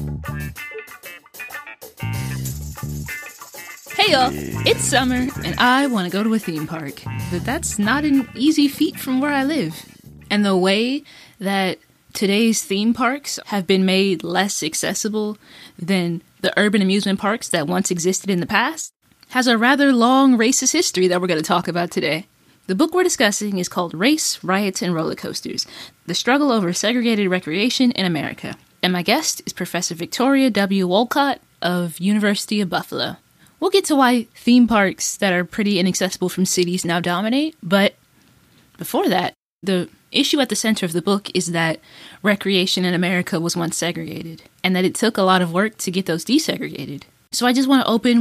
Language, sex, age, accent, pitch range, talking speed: English, female, 20-39, American, 175-230 Hz, 175 wpm